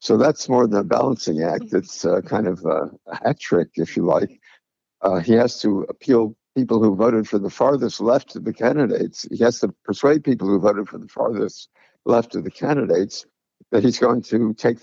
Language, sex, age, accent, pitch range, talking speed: English, male, 60-79, American, 100-125 Hz, 205 wpm